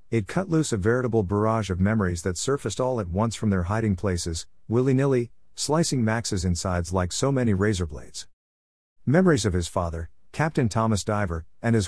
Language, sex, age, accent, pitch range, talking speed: English, male, 50-69, American, 90-120 Hz, 175 wpm